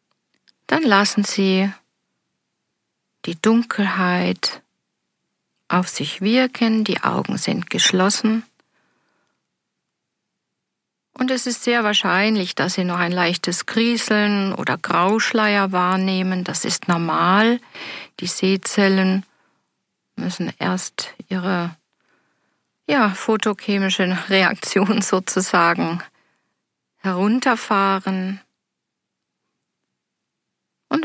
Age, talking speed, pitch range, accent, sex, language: 50-69, 75 wpm, 180-215 Hz, German, female, German